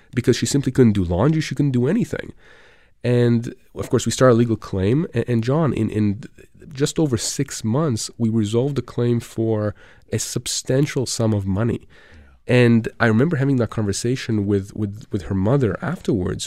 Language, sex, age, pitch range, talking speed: English, male, 30-49, 100-130 Hz, 175 wpm